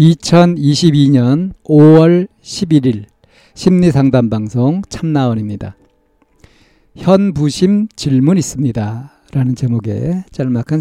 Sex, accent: male, native